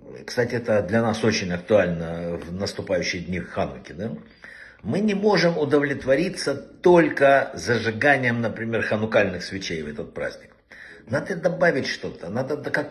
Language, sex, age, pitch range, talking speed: Russian, male, 60-79, 110-150 Hz, 130 wpm